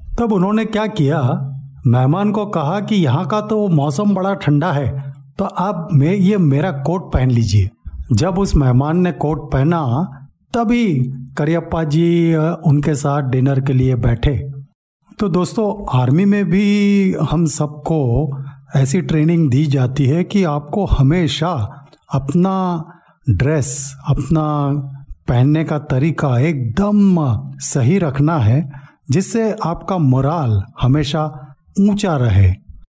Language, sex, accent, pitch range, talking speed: Hindi, male, native, 135-180 Hz, 125 wpm